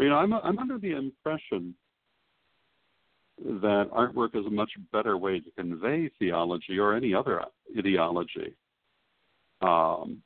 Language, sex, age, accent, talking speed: English, male, 60-79, American, 130 wpm